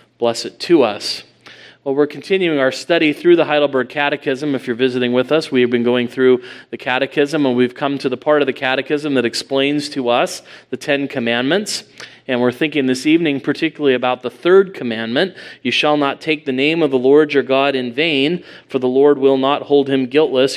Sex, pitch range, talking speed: male, 125-155 Hz, 205 wpm